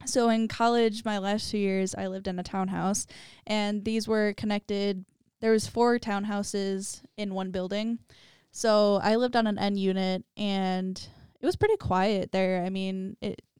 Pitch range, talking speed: 195-220 Hz, 170 wpm